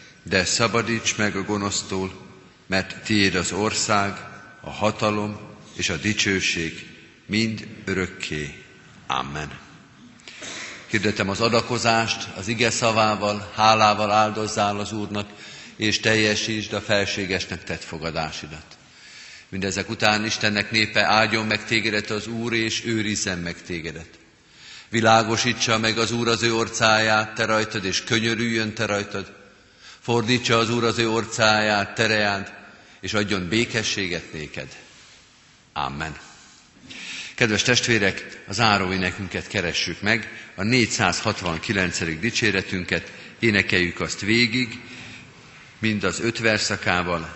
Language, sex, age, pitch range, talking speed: Hungarian, male, 50-69, 95-110 Hz, 110 wpm